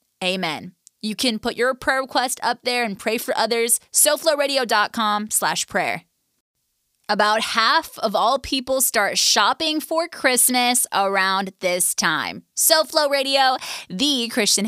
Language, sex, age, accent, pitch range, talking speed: English, female, 20-39, American, 200-265 Hz, 135 wpm